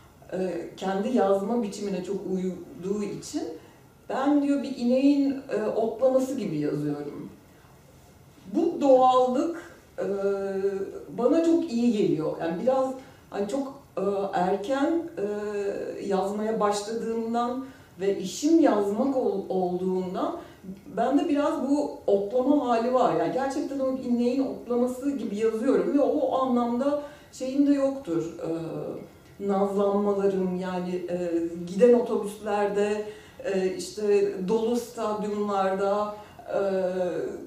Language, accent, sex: Turkish, native, female